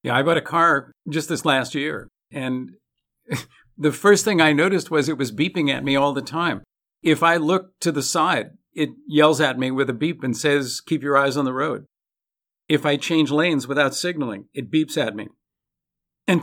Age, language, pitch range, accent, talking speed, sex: 50-69, English, 135-160 Hz, American, 205 wpm, male